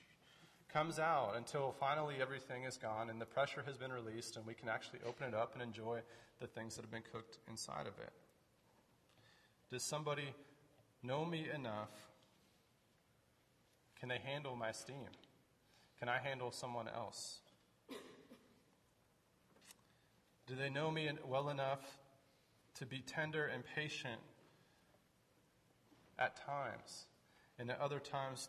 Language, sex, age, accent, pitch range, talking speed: English, male, 30-49, American, 115-140 Hz, 135 wpm